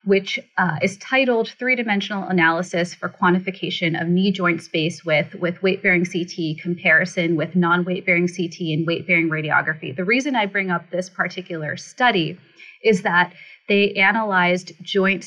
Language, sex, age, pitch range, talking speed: English, female, 30-49, 170-200 Hz, 140 wpm